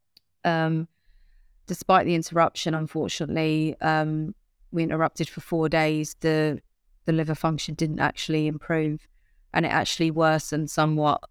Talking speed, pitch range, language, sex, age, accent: 120 wpm, 150-160 Hz, English, female, 30-49, British